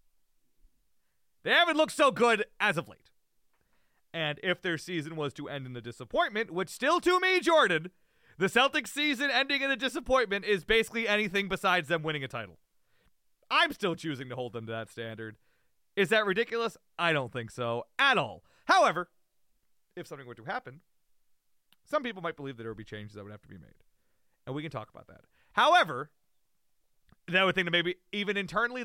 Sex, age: male, 30-49